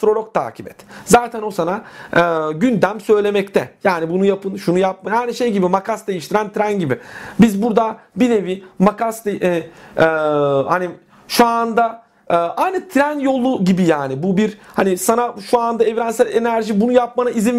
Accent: native